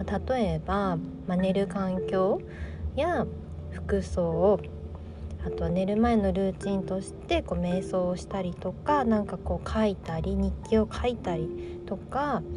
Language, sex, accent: Japanese, female, native